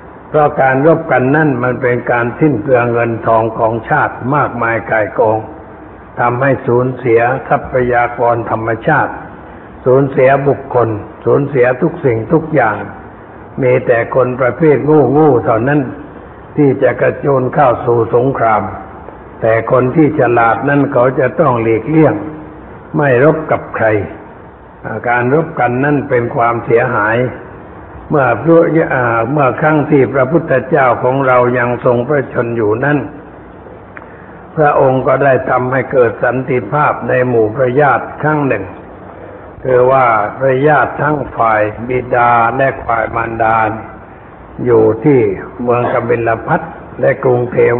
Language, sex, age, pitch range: Thai, male, 60-79, 115-145 Hz